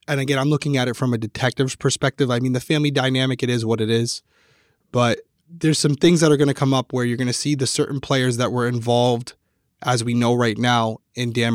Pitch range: 120-140 Hz